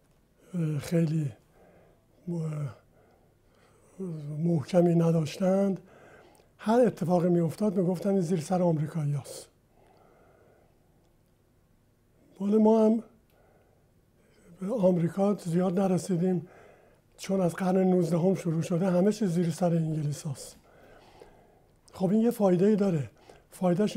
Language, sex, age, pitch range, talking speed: Persian, male, 60-79, 165-195 Hz, 80 wpm